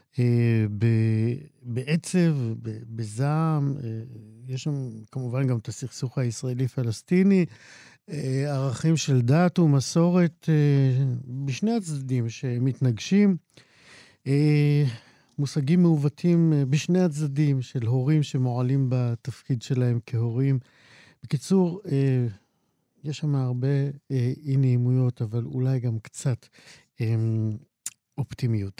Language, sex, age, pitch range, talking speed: Hebrew, male, 50-69, 120-145 Hz, 95 wpm